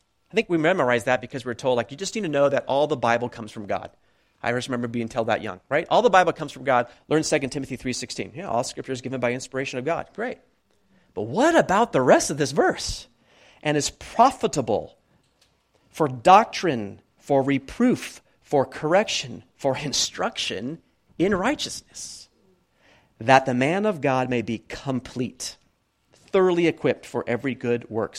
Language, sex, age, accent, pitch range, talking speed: English, male, 40-59, American, 115-155 Hz, 180 wpm